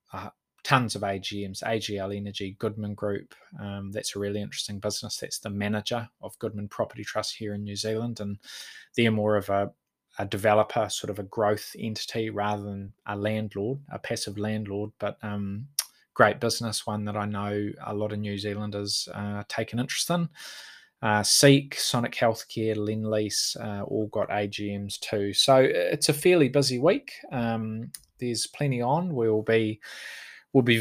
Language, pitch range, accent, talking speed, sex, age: English, 105-115 Hz, Australian, 170 wpm, male, 20-39